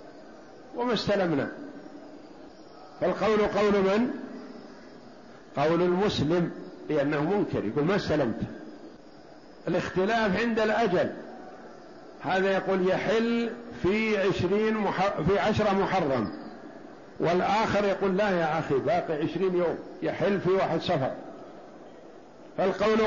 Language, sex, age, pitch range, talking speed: Arabic, male, 50-69, 145-205 Hz, 90 wpm